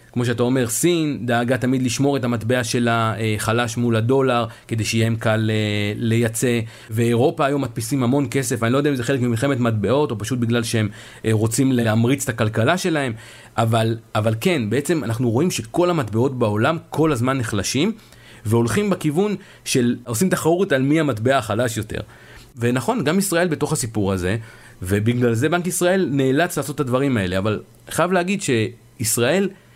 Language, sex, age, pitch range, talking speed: Hebrew, male, 40-59, 115-140 Hz, 165 wpm